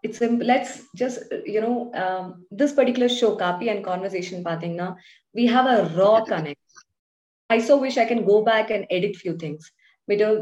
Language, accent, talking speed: English, Indian, 180 wpm